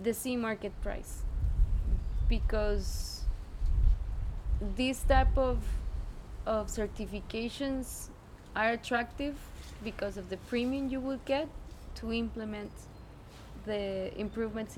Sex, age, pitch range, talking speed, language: female, 20-39, 200-240 Hz, 95 wpm, French